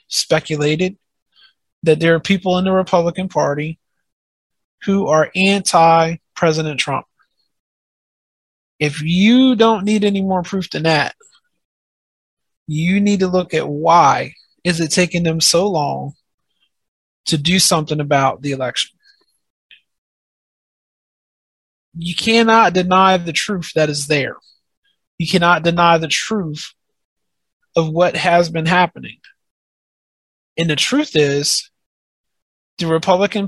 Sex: male